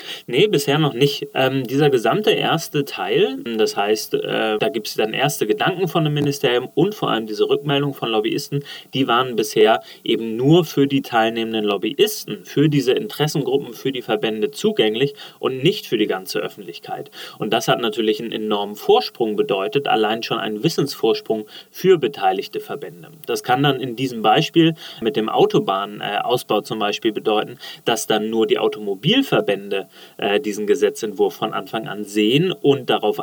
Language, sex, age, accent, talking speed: German, male, 30-49, German, 165 wpm